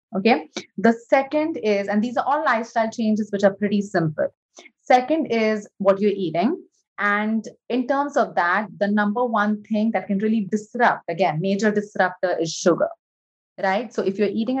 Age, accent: 30-49, Indian